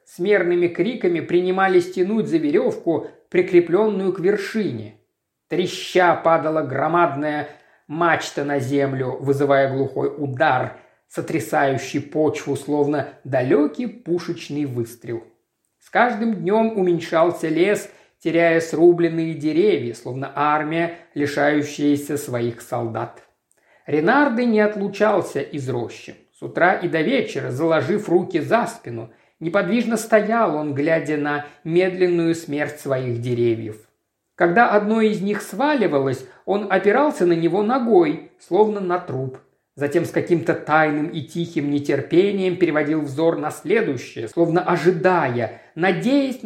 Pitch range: 145-205 Hz